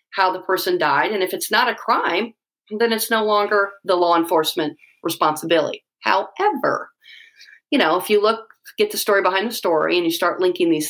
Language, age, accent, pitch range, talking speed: English, 40-59, American, 155-210 Hz, 195 wpm